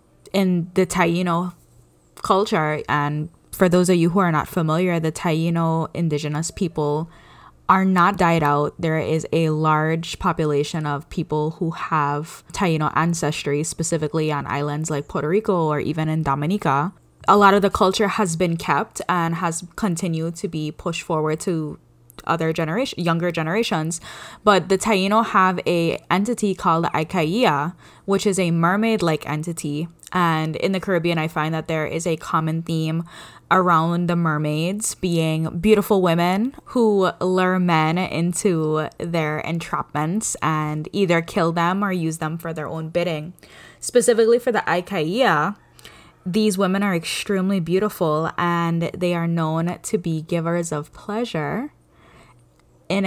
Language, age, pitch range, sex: English, 10-29, 155-185 Hz, female